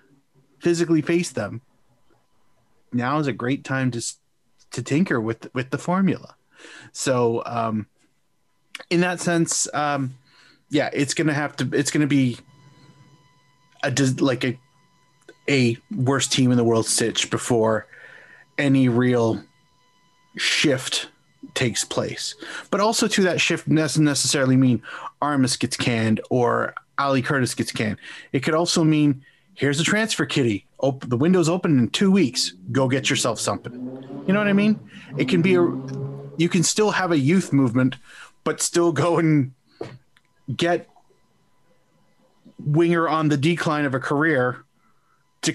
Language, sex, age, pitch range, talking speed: English, male, 30-49, 125-165 Hz, 140 wpm